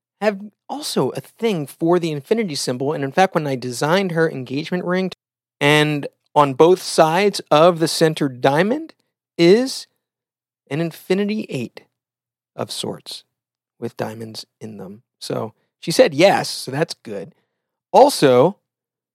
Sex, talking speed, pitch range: male, 135 wpm, 140-205 Hz